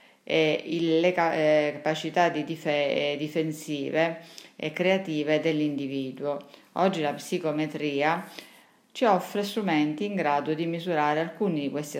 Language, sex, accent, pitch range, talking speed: Italian, female, native, 150-180 Hz, 100 wpm